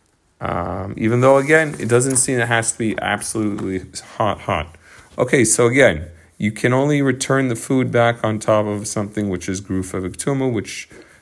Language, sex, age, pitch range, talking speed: English, male, 40-59, 90-115 Hz, 180 wpm